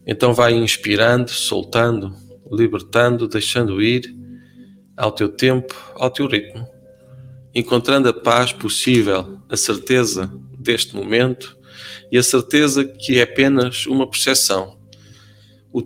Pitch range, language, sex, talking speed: 110-130 Hz, Portuguese, male, 115 wpm